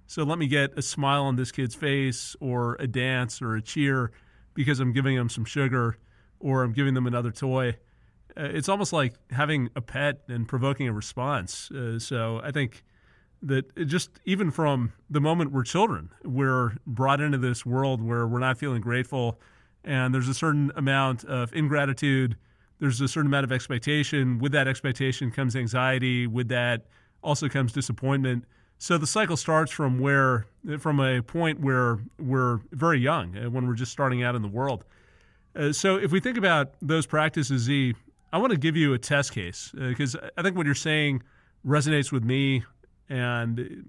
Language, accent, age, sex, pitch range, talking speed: English, American, 40-59, male, 120-145 Hz, 180 wpm